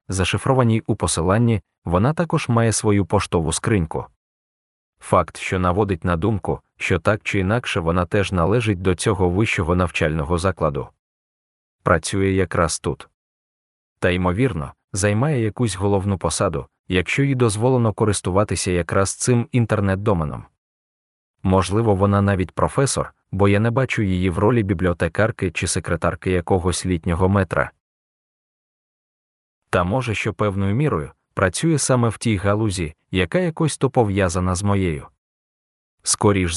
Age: 20-39